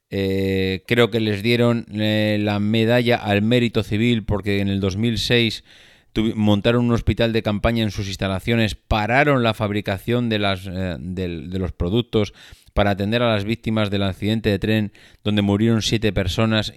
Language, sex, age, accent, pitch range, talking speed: Spanish, male, 30-49, Spanish, 95-110 Hz, 155 wpm